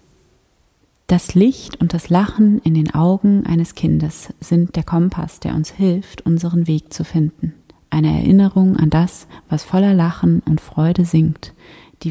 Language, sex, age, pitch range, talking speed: German, female, 30-49, 155-180 Hz, 155 wpm